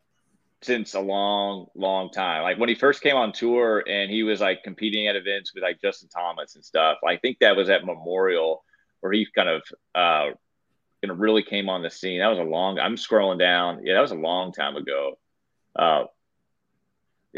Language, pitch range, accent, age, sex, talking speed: English, 105-140 Hz, American, 30-49, male, 195 wpm